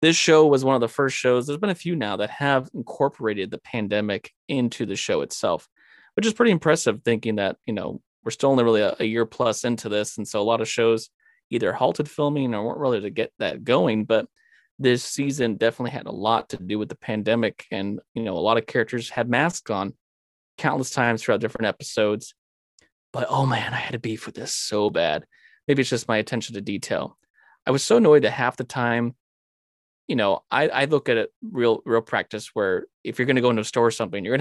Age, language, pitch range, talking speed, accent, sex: 20-39, English, 110-130 Hz, 230 wpm, American, male